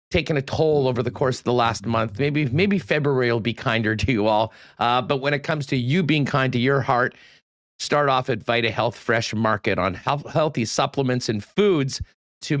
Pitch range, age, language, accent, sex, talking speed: 110-140 Hz, 40-59, English, American, male, 210 wpm